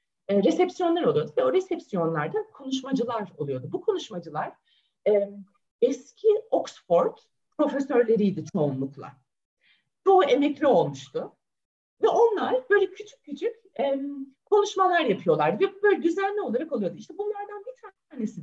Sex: female